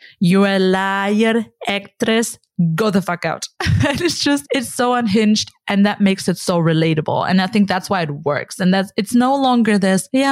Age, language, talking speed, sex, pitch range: 20-39, English, 200 wpm, female, 175-215 Hz